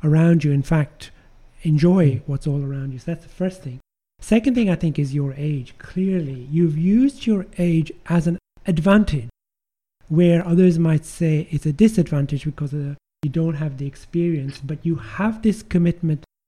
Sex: male